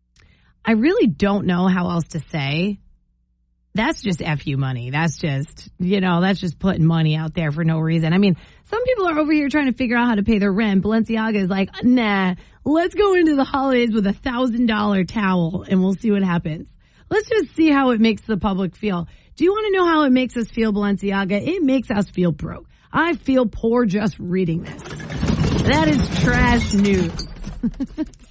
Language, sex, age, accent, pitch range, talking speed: English, female, 30-49, American, 165-225 Hz, 205 wpm